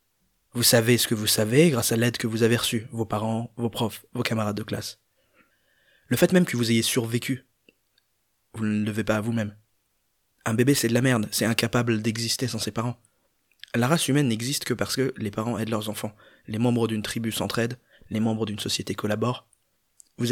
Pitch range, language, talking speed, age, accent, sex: 105-120 Hz, French, 205 wpm, 20-39, French, male